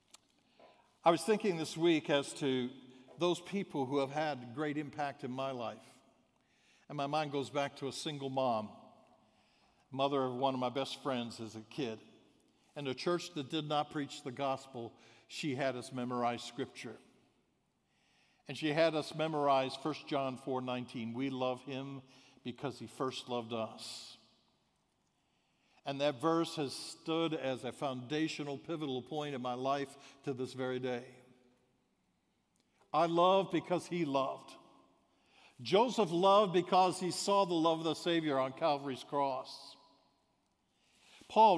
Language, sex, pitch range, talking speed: English, male, 130-165 Hz, 150 wpm